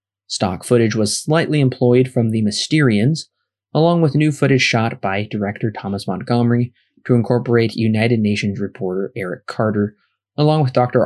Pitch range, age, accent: 105-135 Hz, 20-39, American